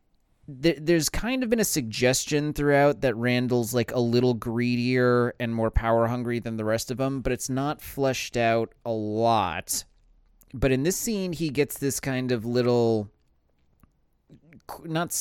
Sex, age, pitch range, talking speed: male, 20-39, 115-145 Hz, 160 wpm